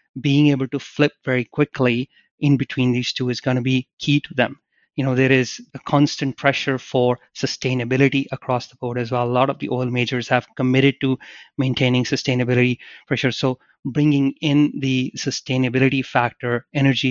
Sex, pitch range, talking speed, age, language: male, 125-140 Hz, 175 wpm, 30-49, English